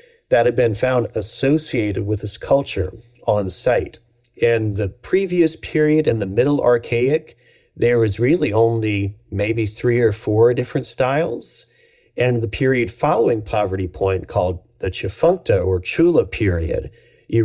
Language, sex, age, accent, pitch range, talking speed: English, male, 40-59, American, 105-135 Hz, 140 wpm